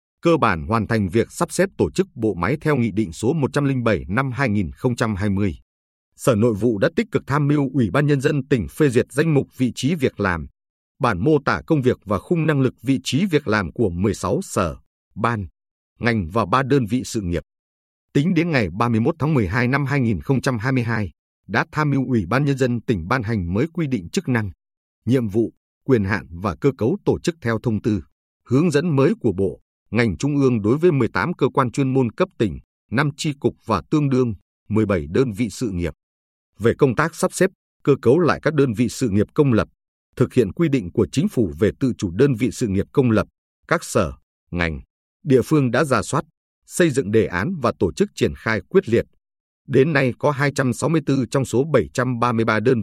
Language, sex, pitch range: Vietnamese, male, 105-140 Hz